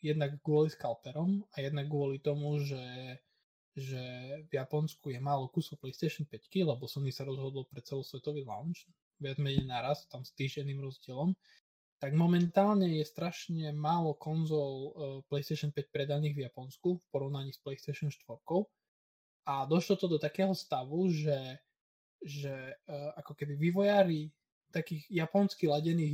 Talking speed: 140 wpm